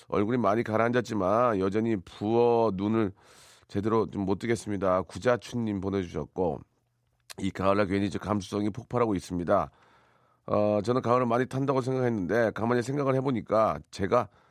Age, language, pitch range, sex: 40-59, Korean, 100-130 Hz, male